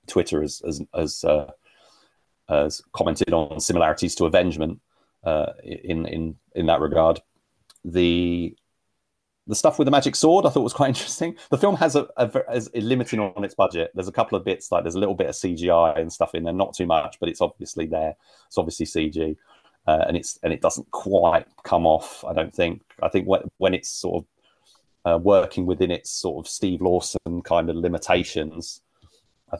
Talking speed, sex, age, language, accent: 195 wpm, male, 30-49, English, British